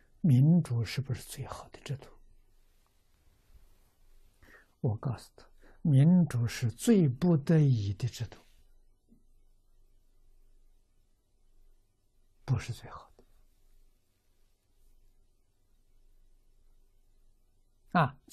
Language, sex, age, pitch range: Chinese, male, 60-79, 100-125 Hz